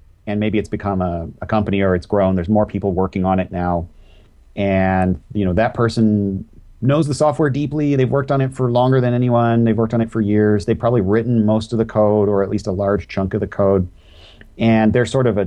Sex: male